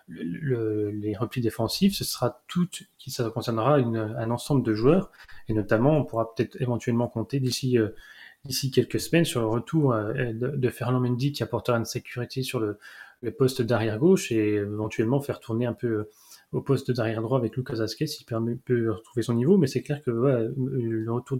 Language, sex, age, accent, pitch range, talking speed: French, male, 30-49, French, 115-135 Hz, 195 wpm